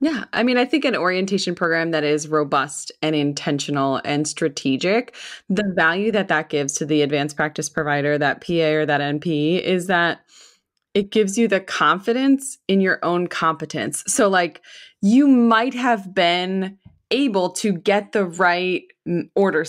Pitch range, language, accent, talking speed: 160-230 Hz, English, American, 160 wpm